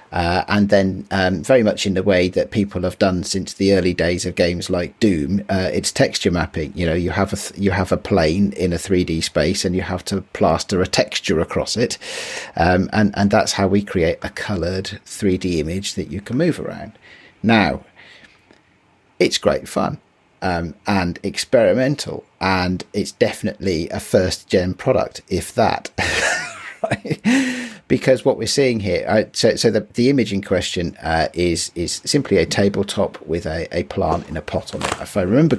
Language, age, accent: English, 40-59, British